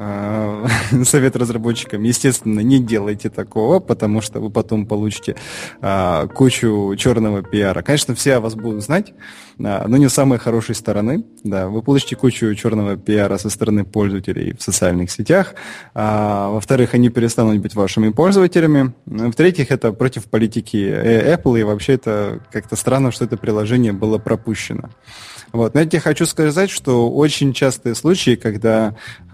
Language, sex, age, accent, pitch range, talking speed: Russian, male, 20-39, native, 105-130 Hz, 135 wpm